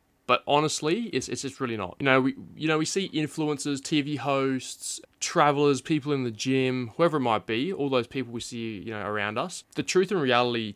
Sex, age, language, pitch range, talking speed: male, 20-39, English, 110-145 Hz, 220 wpm